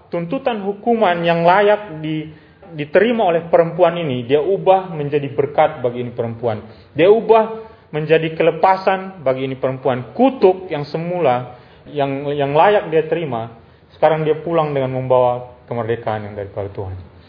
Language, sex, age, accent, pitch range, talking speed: Indonesian, male, 30-49, native, 125-185 Hz, 140 wpm